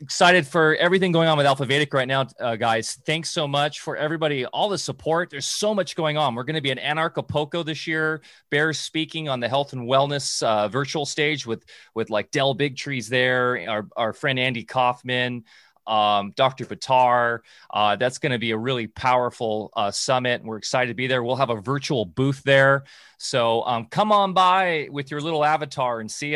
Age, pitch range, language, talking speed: 30-49, 125-150 Hz, English, 205 wpm